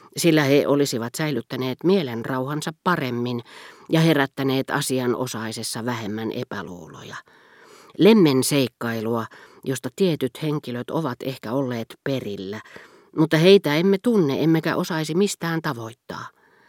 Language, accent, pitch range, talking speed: Finnish, native, 120-160 Hz, 105 wpm